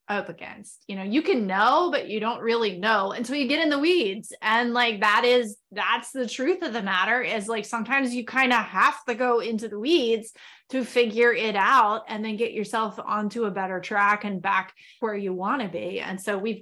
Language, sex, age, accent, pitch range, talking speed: English, female, 20-39, American, 195-240 Hz, 225 wpm